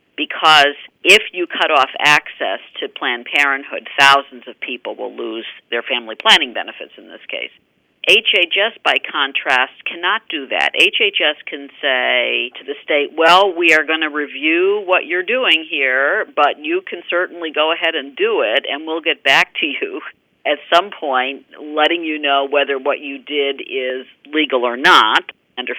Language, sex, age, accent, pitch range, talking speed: English, female, 50-69, American, 135-215 Hz, 170 wpm